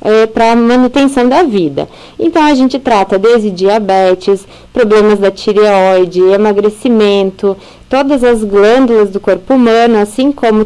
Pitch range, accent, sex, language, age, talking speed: 200-255 Hz, Brazilian, female, Portuguese, 20-39, 130 wpm